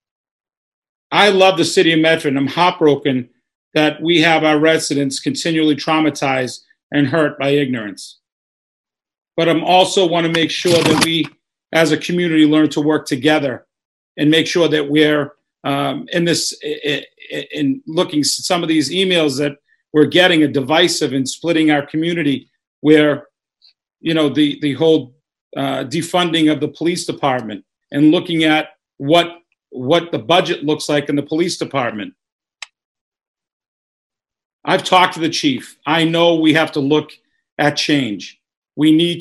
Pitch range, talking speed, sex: 145-165 Hz, 150 wpm, male